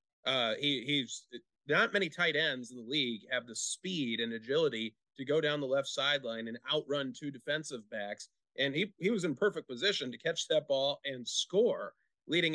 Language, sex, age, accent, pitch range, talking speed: English, male, 30-49, American, 130-175 Hz, 190 wpm